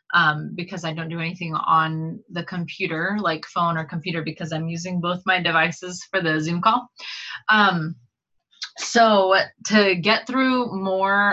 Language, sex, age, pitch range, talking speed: English, female, 20-39, 160-195 Hz, 155 wpm